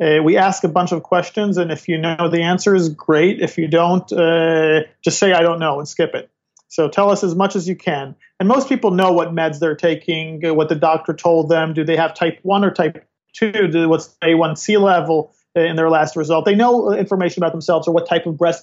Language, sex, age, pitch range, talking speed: English, male, 40-59, 160-190 Hz, 240 wpm